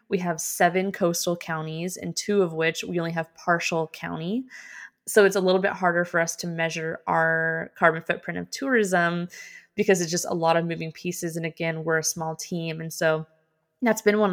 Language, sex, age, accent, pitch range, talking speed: English, female, 20-39, American, 160-180 Hz, 200 wpm